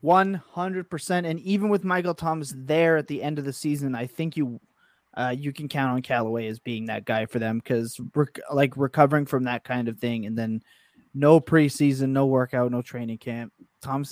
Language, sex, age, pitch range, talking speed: English, male, 20-39, 125-160 Hz, 200 wpm